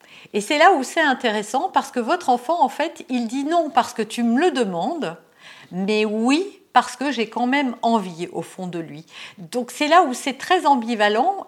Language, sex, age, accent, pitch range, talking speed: French, female, 50-69, French, 185-250 Hz, 215 wpm